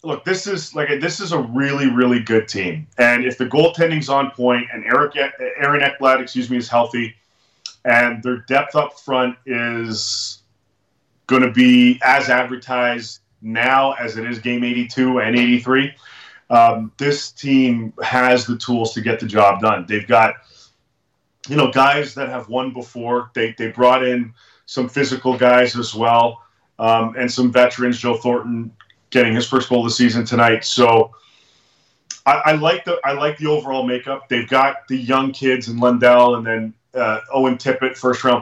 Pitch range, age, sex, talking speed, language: 115-130 Hz, 30-49, male, 175 wpm, English